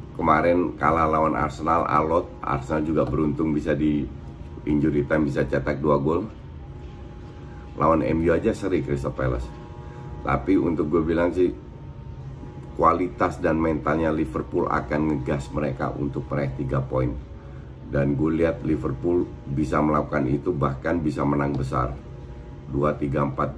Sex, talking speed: male, 125 wpm